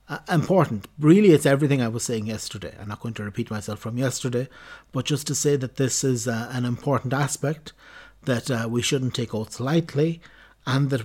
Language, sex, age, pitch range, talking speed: English, male, 60-79, 115-135 Hz, 200 wpm